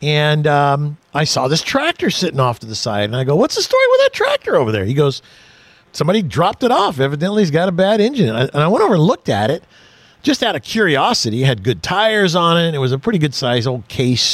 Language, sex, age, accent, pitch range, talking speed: English, male, 50-69, American, 135-215 Hz, 260 wpm